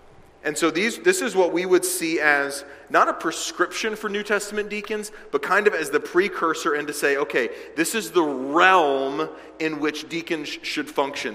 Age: 30-49